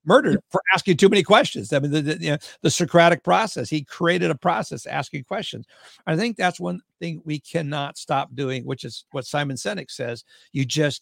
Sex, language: male, English